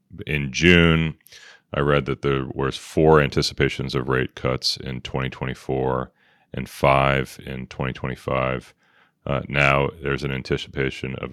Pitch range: 65-75 Hz